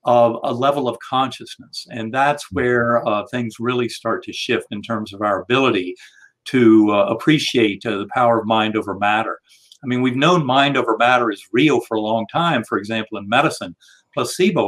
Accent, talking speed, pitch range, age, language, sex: American, 190 wpm, 115-150 Hz, 50-69, English, male